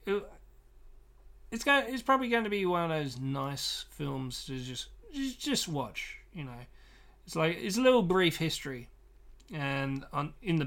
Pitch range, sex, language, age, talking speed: 135-185 Hz, male, English, 30-49, 175 wpm